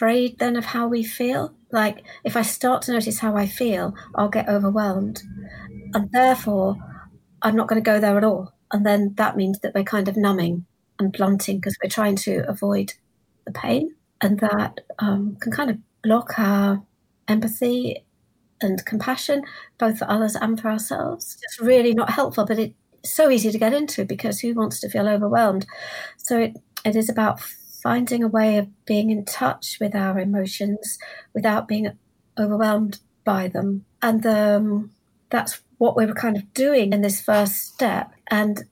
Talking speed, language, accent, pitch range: 175 wpm, English, British, 205-235 Hz